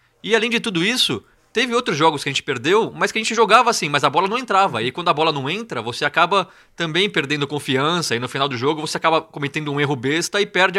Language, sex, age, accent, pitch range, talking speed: Portuguese, male, 20-39, Brazilian, 130-185 Hz, 260 wpm